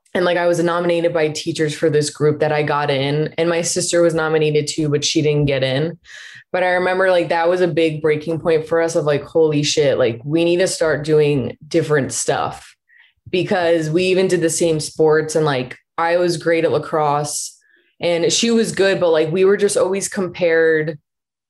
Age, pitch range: 20-39, 150-170 Hz